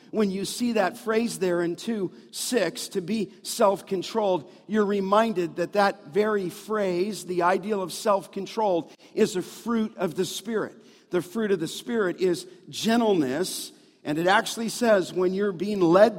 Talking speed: 165 wpm